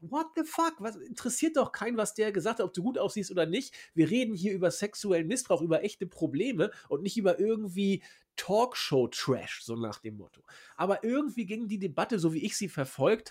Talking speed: 205 wpm